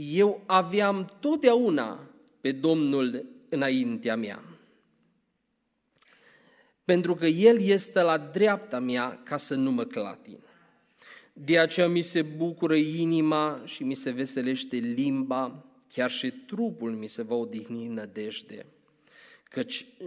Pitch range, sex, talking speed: 135-225 Hz, male, 120 wpm